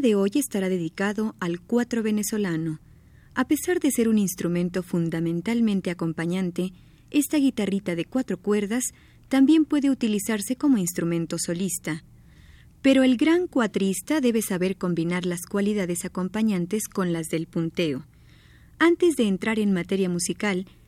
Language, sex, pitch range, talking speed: Spanish, female, 180-250 Hz, 130 wpm